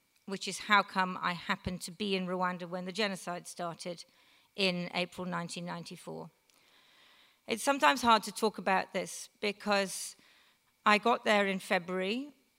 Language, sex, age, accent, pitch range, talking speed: English, female, 40-59, British, 180-205 Hz, 145 wpm